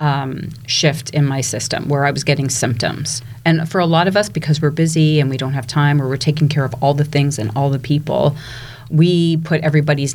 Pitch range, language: 130-155 Hz, English